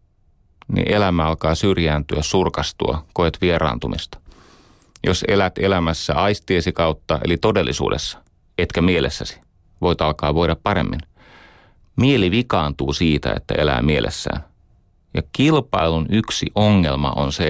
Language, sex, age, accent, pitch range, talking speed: Finnish, male, 30-49, native, 75-95 Hz, 110 wpm